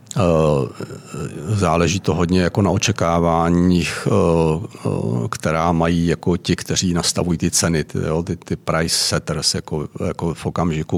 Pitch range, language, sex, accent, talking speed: 80-90 Hz, Czech, male, native, 120 wpm